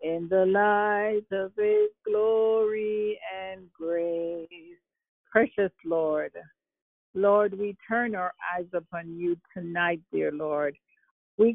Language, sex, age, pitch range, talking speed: English, female, 50-69, 175-210 Hz, 110 wpm